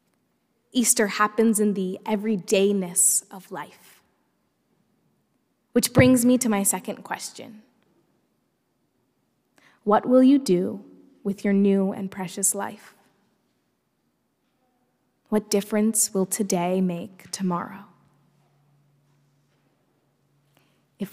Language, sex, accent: English, female, American